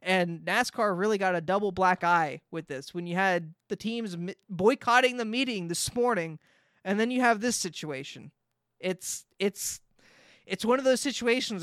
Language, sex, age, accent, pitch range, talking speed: English, male, 20-39, American, 180-230 Hz, 175 wpm